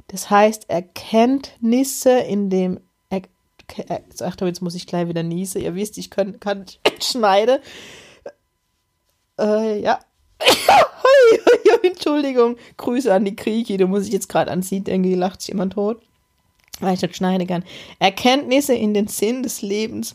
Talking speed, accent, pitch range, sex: 145 wpm, German, 180-220 Hz, female